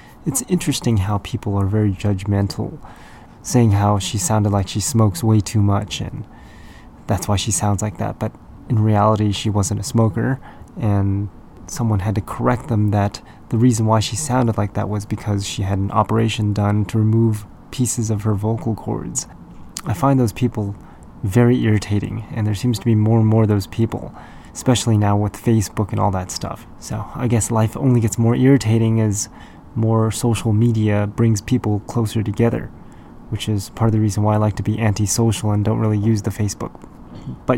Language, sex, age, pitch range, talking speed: English, male, 20-39, 105-115 Hz, 190 wpm